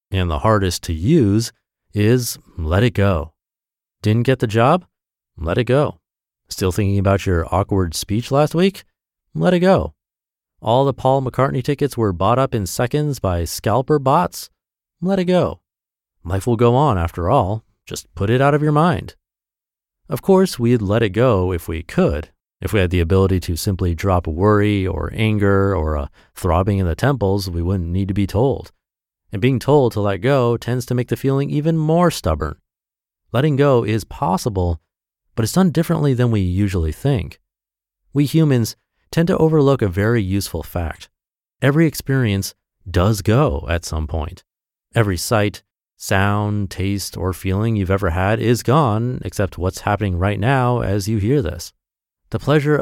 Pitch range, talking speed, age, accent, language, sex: 95-130 Hz, 175 wpm, 30-49, American, English, male